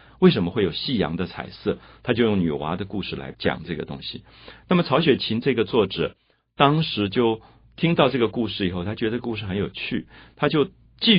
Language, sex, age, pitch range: Chinese, male, 50-69, 95-130 Hz